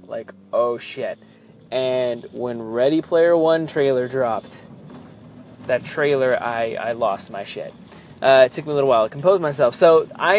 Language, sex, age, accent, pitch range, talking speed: English, male, 20-39, American, 125-165 Hz, 165 wpm